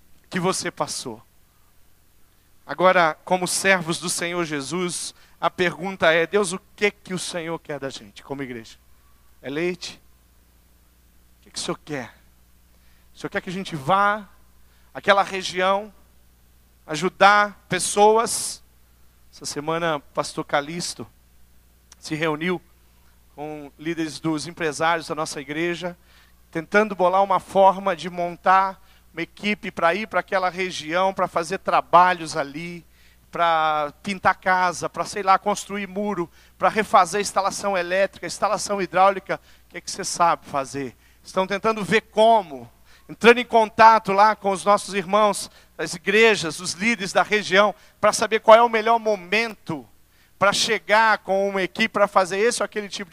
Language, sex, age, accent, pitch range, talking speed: Portuguese, male, 40-59, Brazilian, 145-200 Hz, 145 wpm